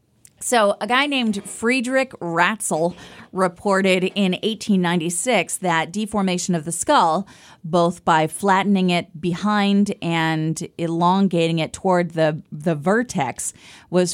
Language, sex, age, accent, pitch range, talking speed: English, female, 30-49, American, 160-195 Hz, 115 wpm